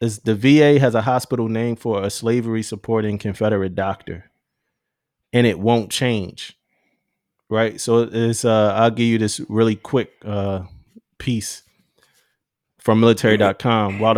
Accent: American